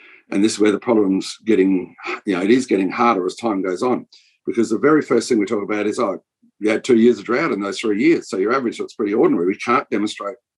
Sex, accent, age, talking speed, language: male, Australian, 50-69, 260 wpm, English